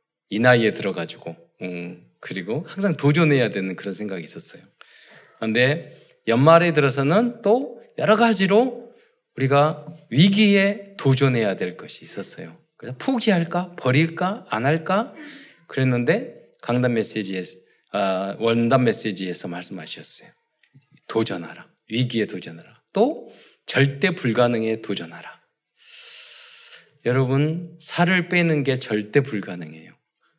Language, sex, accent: Korean, male, native